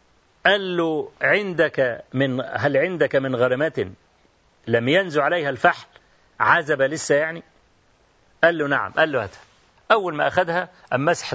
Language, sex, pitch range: Arabic, male, 135-190 Hz